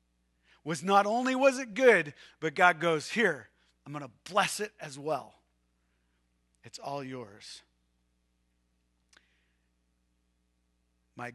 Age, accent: 40-59, American